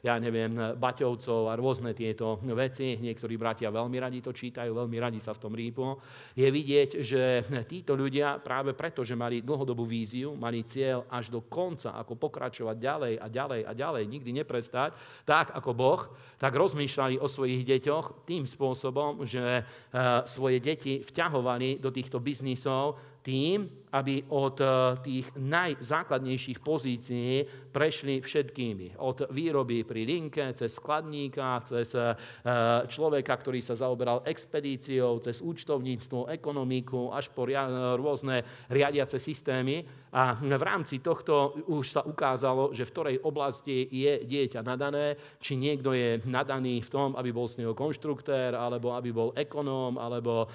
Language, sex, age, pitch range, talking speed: Slovak, male, 50-69, 120-140 Hz, 140 wpm